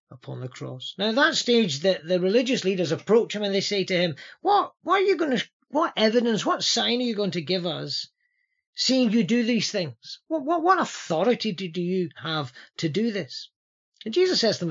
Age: 40-59